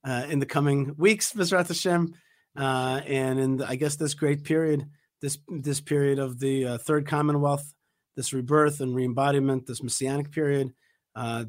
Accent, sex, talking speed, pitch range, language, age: American, male, 165 wpm, 130-150 Hz, English, 40-59